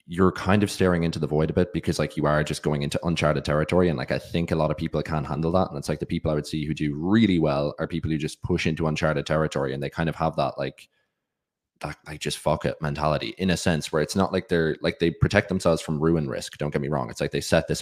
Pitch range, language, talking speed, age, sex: 75-85 Hz, English, 290 wpm, 20-39, male